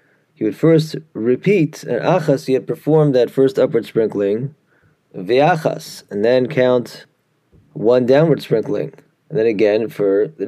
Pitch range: 110-150 Hz